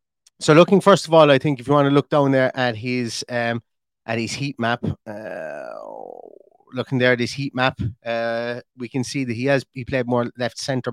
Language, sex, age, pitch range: English, male, 30-49, 120-145 Hz